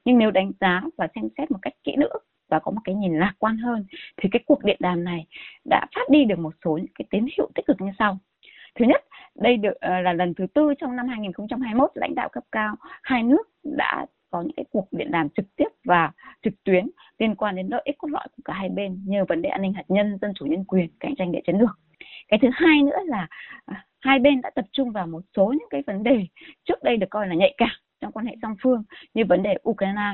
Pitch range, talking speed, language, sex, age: 190-270 Hz, 255 wpm, Vietnamese, female, 20-39